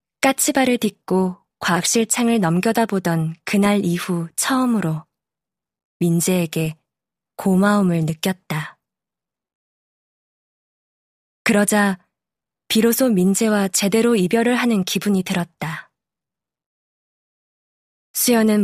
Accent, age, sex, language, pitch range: native, 20-39, female, Korean, 175-220 Hz